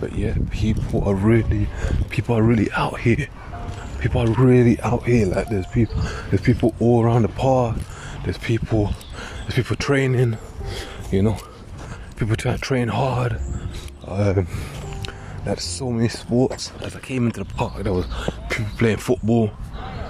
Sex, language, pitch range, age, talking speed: male, English, 90-110 Hz, 20-39, 155 wpm